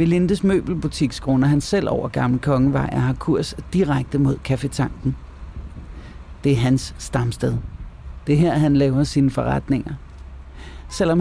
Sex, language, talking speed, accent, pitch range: male, Danish, 135 wpm, native, 120-160 Hz